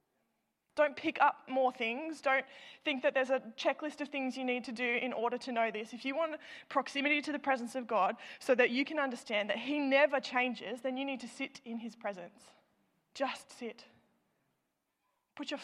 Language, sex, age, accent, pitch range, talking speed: English, female, 20-39, Australian, 240-300 Hz, 200 wpm